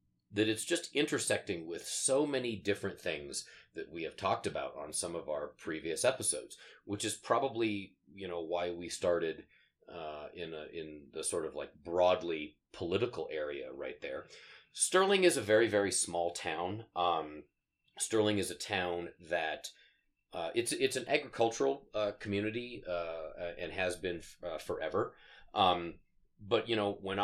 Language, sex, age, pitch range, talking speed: English, male, 30-49, 90-135 Hz, 160 wpm